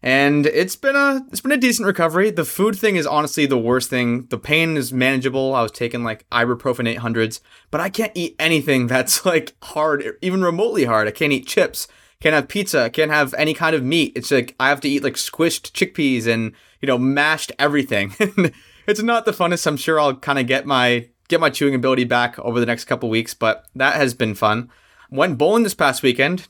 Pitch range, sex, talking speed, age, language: 120-150 Hz, male, 220 wpm, 20-39, English